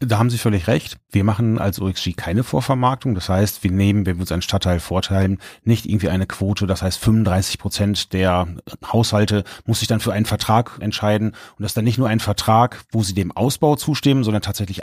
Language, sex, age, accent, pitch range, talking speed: German, male, 30-49, German, 95-115 Hz, 215 wpm